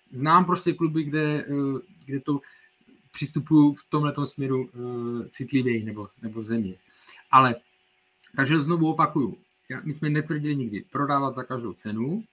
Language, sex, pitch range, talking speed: Czech, male, 130-160 Hz, 130 wpm